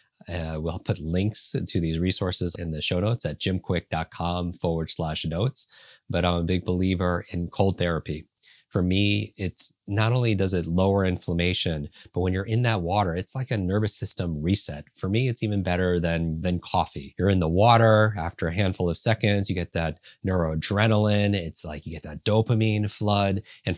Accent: American